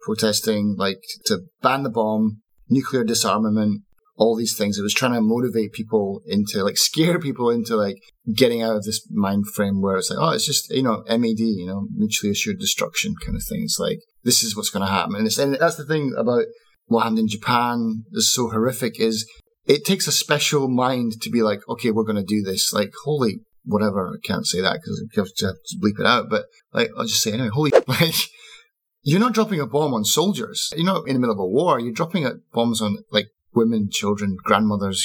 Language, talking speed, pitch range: English, 215 wpm, 110-165 Hz